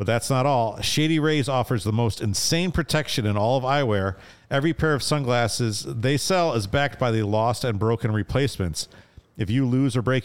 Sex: male